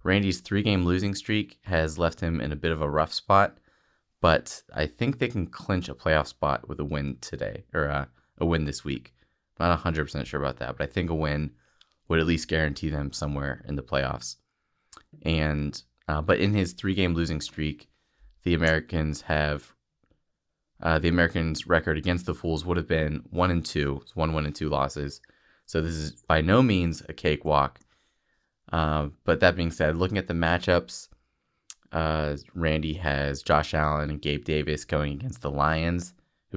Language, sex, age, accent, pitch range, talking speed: English, male, 20-39, American, 75-90 Hz, 180 wpm